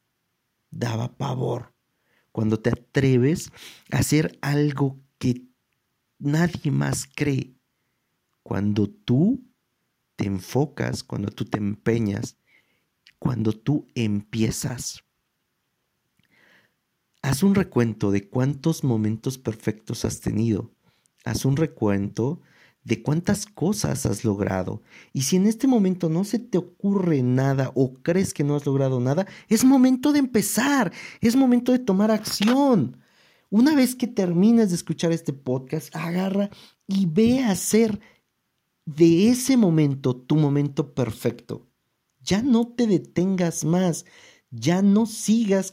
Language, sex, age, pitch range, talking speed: Spanish, male, 50-69, 125-195 Hz, 120 wpm